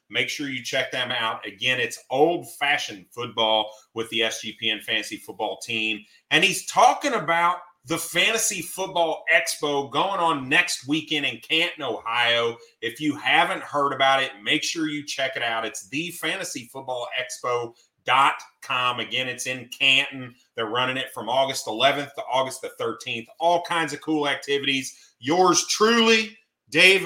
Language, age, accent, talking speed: English, 30-49, American, 150 wpm